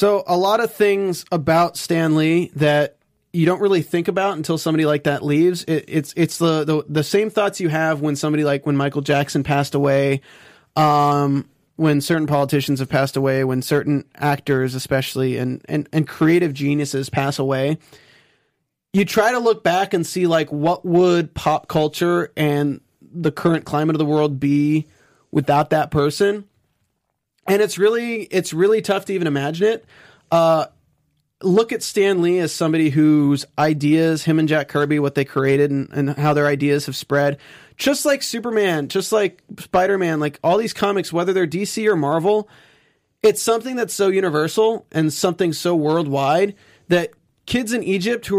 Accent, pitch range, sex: American, 145-180 Hz, male